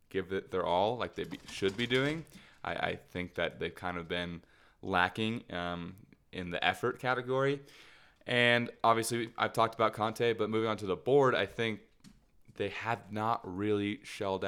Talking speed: 175 wpm